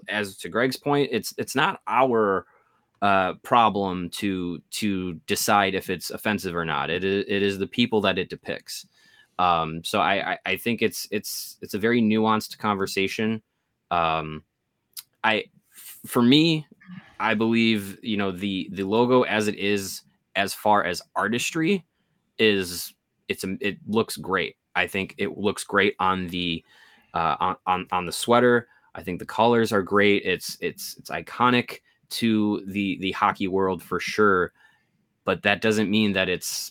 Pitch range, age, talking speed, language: 95-120 Hz, 20-39, 165 wpm, English